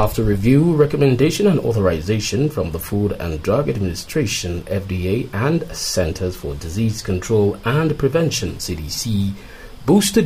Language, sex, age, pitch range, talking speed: English, male, 30-49, 95-135 Hz, 125 wpm